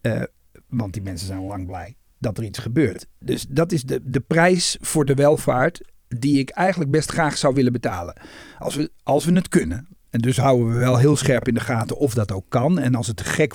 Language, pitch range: Dutch, 120-160 Hz